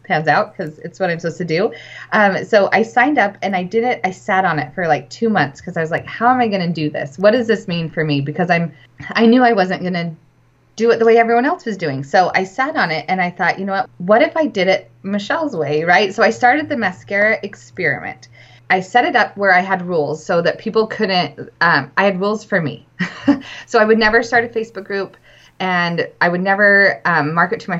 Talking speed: 255 wpm